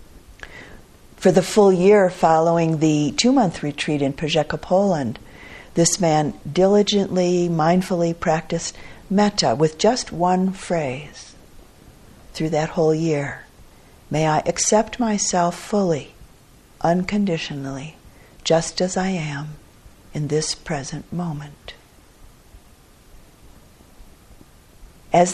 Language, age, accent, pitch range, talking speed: English, 50-69, American, 150-185 Hz, 95 wpm